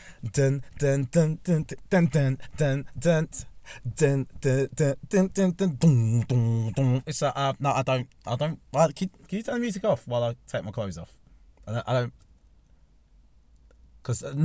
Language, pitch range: English, 90-140 Hz